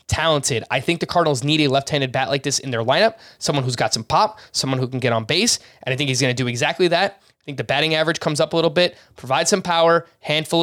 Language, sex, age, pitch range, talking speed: English, male, 20-39, 135-190 Hz, 270 wpm